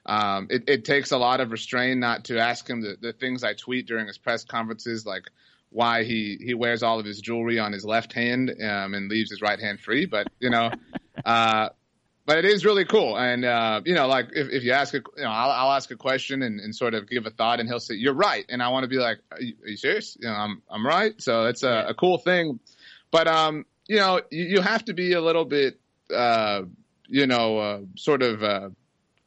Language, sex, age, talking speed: English, male, 30-49, 245 wpm